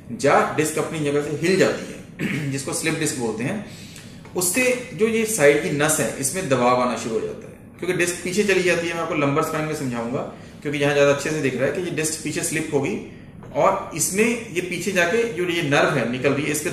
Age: 30-49